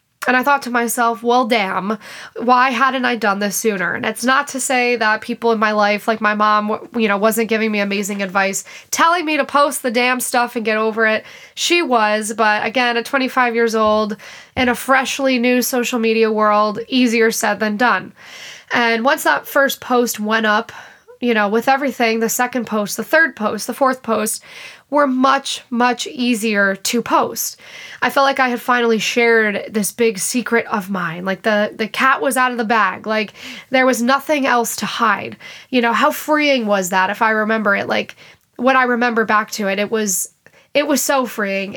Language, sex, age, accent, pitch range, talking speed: English, female, 20-39, American, 215-255 Hz, 200 wpm